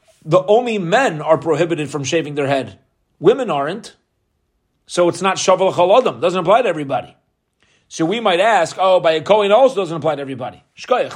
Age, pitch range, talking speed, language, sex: 30-49, 165-210 Hz, 185 wpm, English, male